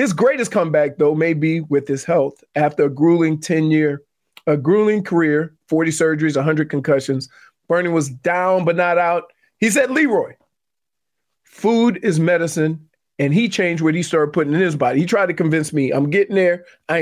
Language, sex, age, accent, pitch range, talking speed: English, male, 40-59, American, 150-200 Hz, 185 wpm